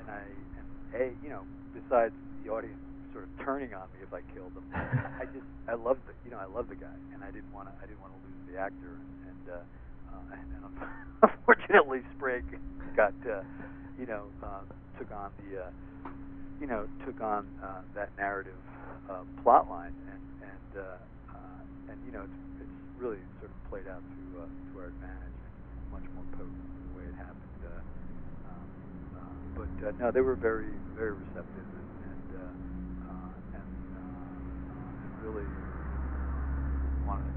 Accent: American